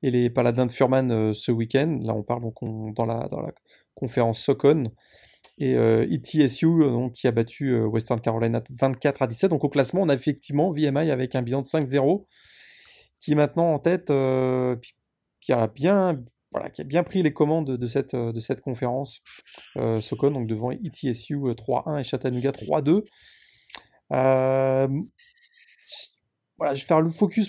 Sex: male